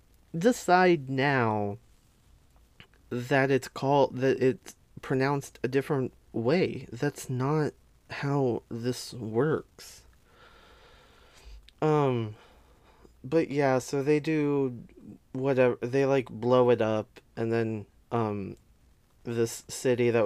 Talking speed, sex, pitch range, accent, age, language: 100 wpm, male, 105-135 Hz, American, 20-39, English